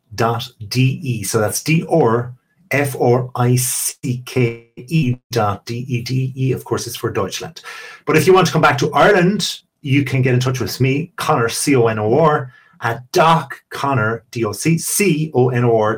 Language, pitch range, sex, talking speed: English, 115-145 Hz, male, 120 wpm